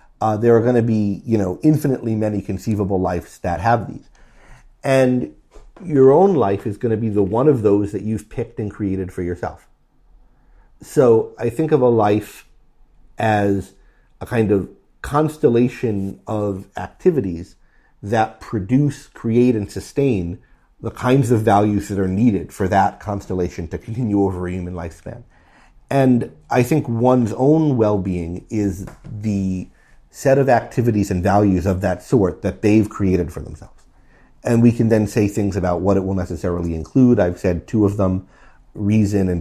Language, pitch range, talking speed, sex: English, 90-115 Hz, 165 wpm, male